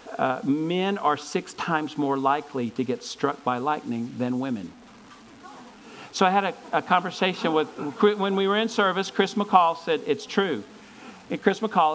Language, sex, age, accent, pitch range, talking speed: English, male, 50-69, American, 135-210 Hz, 170 wpm